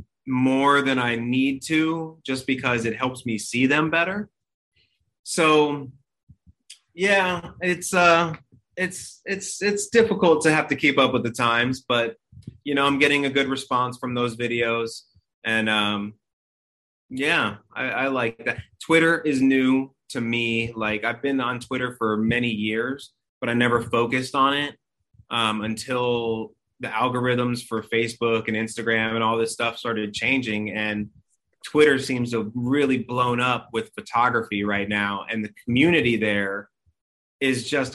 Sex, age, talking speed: male, 30-49, 155 wpm